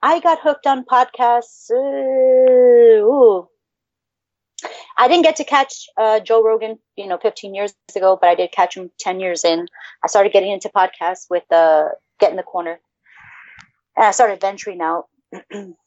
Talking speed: 165 wpm